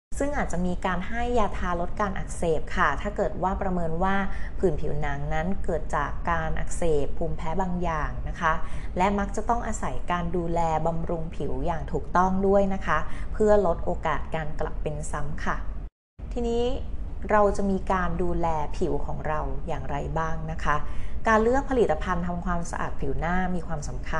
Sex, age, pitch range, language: female, 20-39, 165-200 Hz, Thai